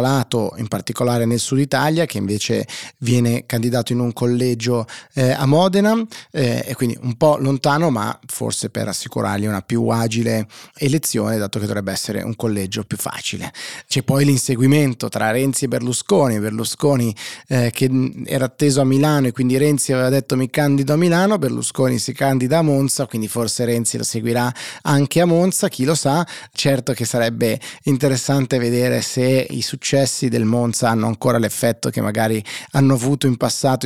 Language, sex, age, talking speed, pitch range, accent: Italian, male, 30-49, 170 wpm, 115-140 Hz, native